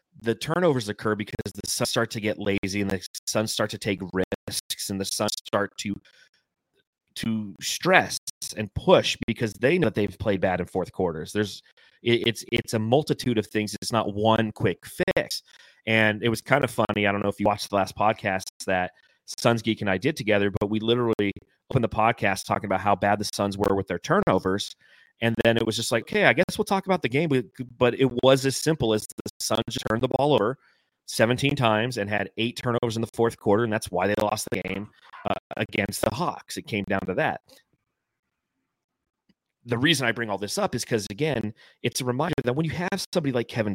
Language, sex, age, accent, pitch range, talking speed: English, male, 30-49, American, 100-125 Hz, 220 wpm